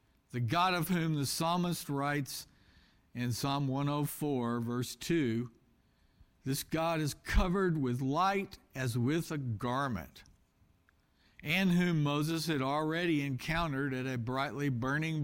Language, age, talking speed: English, 60-79, 125 wpm